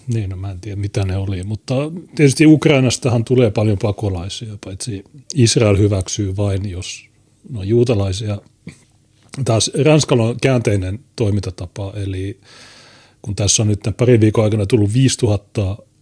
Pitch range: 100-120 Hz